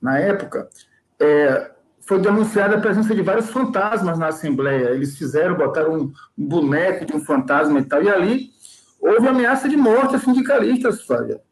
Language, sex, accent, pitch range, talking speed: Portuguese, male, Brazilian, 165-235 Hz, 160 wpm